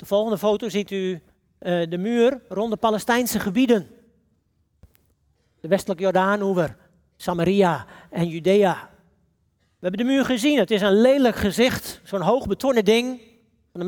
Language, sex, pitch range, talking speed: Dutch, male, 195-255 Hz, 145 wpm